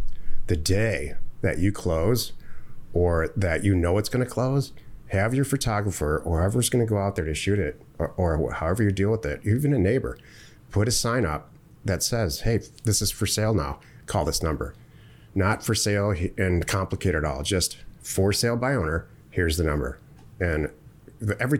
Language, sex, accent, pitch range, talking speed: English, male, American, 90-115 Hz, 185 wpm